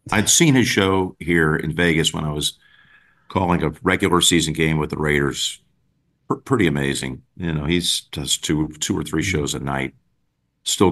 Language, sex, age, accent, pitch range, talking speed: English, male, 50-69, American, 75-95 Hz, 180 wpm